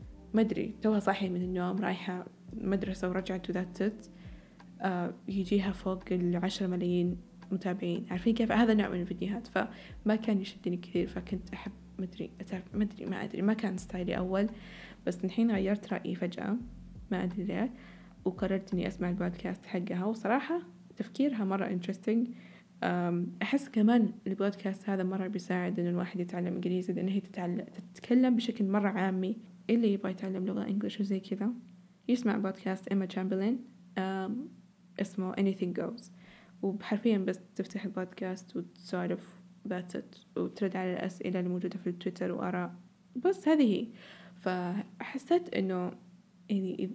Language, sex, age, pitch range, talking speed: Arabic, female, 20-39, 180-210 Hz, 135 wpm